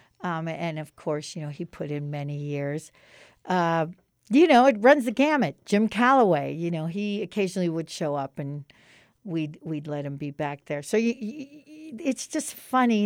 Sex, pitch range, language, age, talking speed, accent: female, 155-210 Hz, English, 60-79, 190 wpm, American